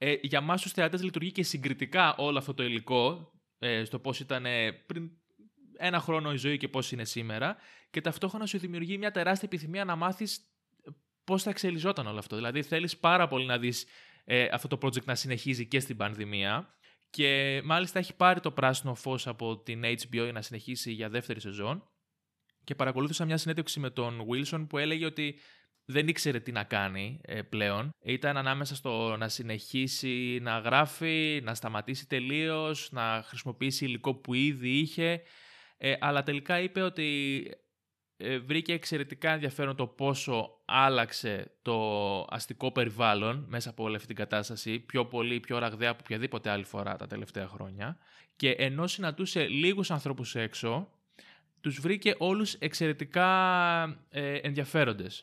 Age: 20-39